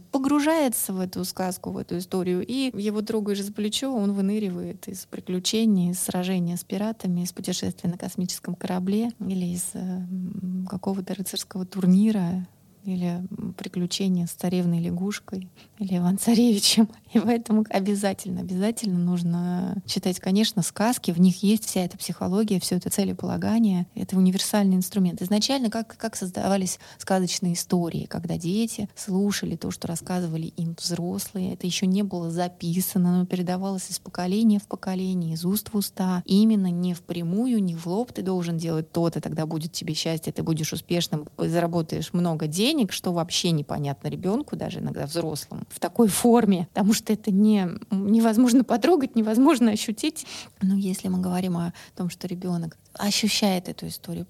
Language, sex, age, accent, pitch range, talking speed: Russian, female, 20-39, native, 180-210 Hz, 150 wpm